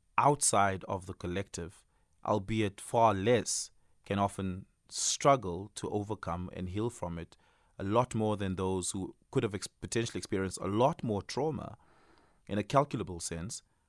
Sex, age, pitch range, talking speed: male, 30-49, 90-110 Hz, 145 wpm